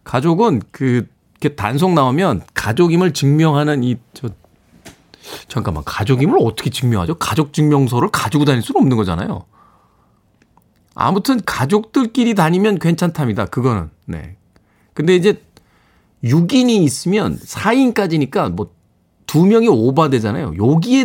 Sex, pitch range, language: male, 110-170 Hz, Korean